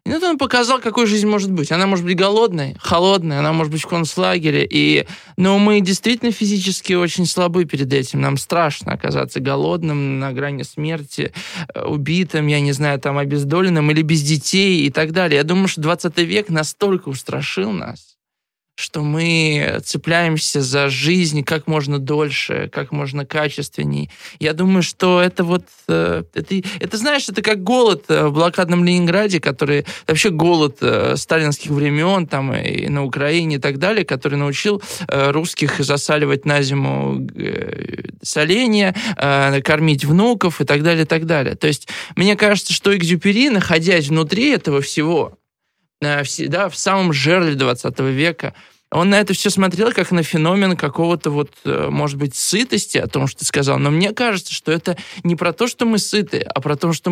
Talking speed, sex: 165 wpm, male